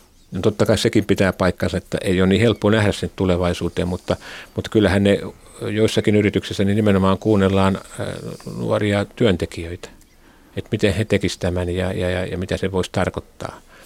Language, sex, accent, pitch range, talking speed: Finnish, male, native, 90-100 Hz, 160 wpm